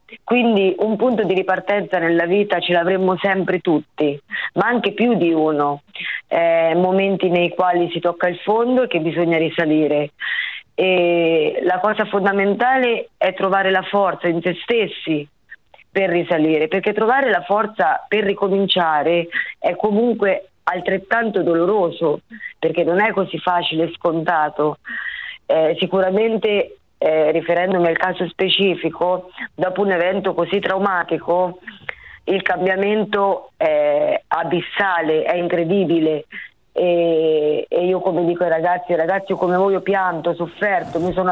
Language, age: Italian, 30-49